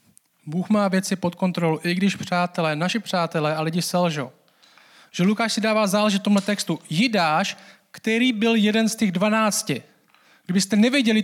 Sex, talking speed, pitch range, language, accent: male, 155 wpm, 175-230 Hz, Czech, native